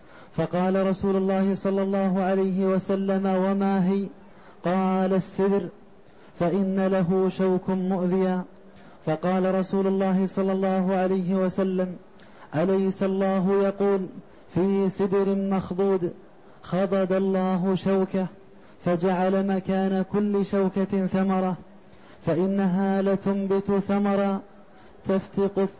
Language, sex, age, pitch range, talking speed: Arabic, male, 20-39, 185-195 Hz, 95 wpm